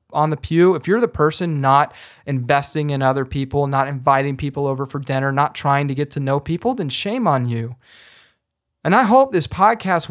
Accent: American